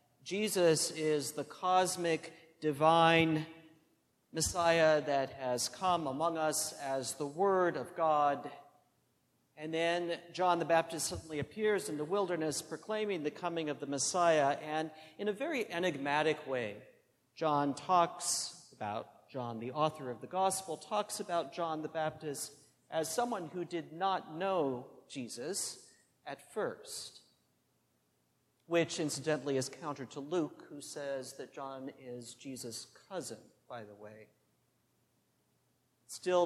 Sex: male